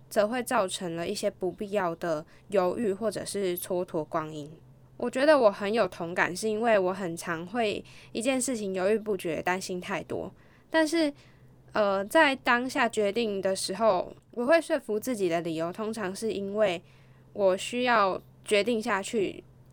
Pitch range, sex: 175-235 Hz, female